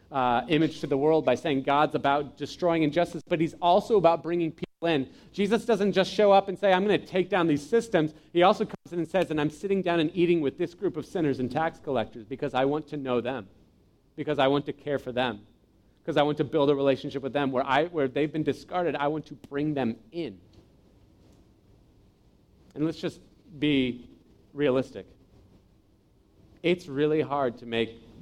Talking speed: 200 wpm